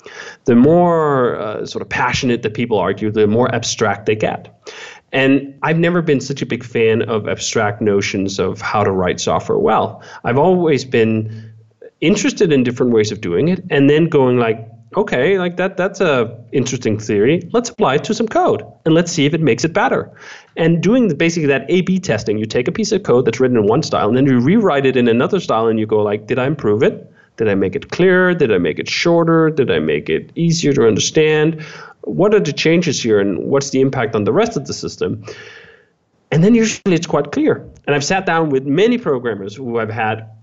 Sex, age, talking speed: male, 30-49, 220 wpm